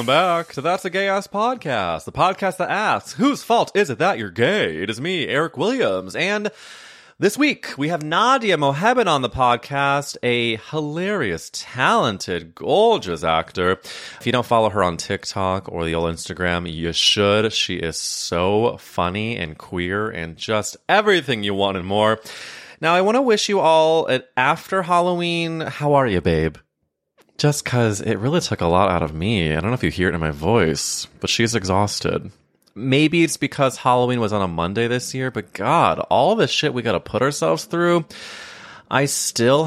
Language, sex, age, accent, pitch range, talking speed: English, male, 30-49, American, 95-140 Hz, 185 wpm